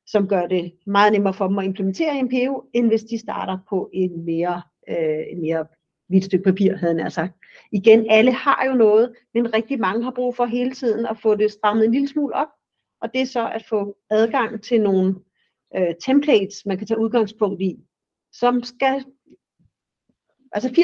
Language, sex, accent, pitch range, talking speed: Danish, female, native, 190-245 Hz, 195 wpm